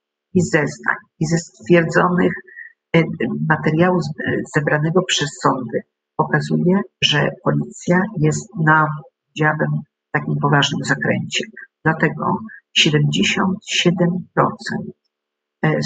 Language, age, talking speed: Polish, 50-69, 80 wpm